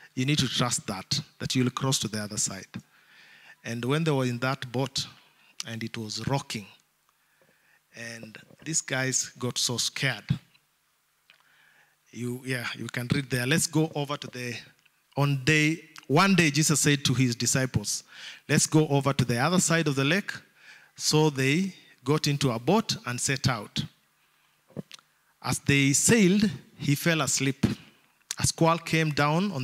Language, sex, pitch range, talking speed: English, male, 130-165 Hz, 160 wpm